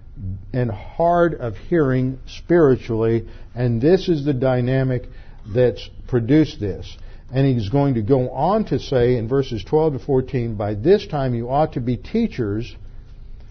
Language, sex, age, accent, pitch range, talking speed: English, male, 50-69, American, 115-150 Hz, 150 wpm